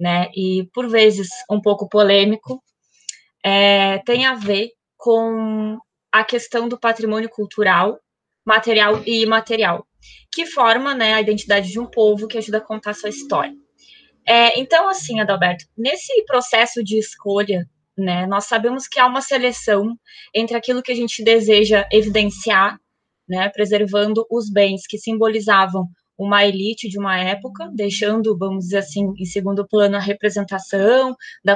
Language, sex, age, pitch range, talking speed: Portuguese, female, 20-39, 200-235 Hz, 150 wpm